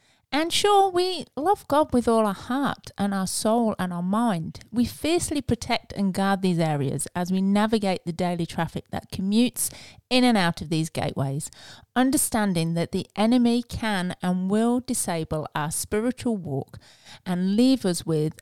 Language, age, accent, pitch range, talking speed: English, 30-49, British, 160-225 Hz, 165 wpm